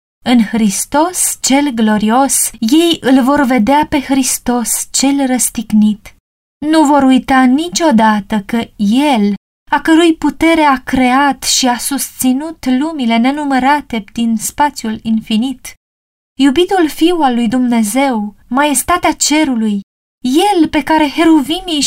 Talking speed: 115 wpm